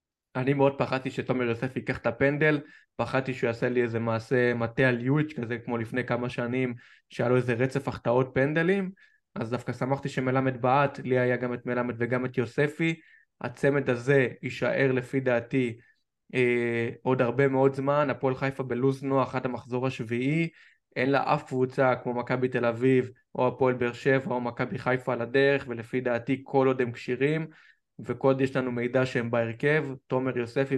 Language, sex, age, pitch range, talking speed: Hebrew, male, 20-39, 120-135 Hz, 175 wpm